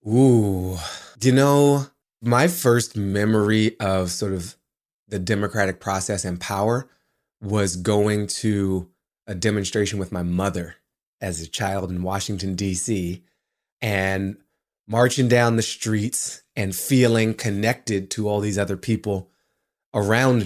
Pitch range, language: 100-120 Hz, English